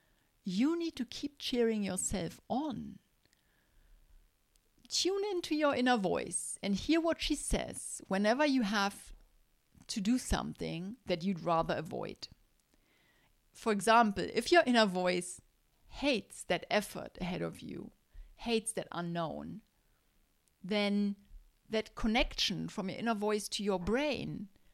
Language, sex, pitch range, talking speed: English, female, 180-235 Hz, 125 wpm